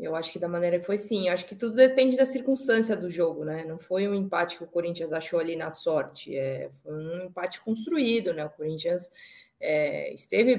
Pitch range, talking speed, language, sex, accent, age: 175-215 Hz, 220 wpm, Portuguese, female, Brazilian, 20-39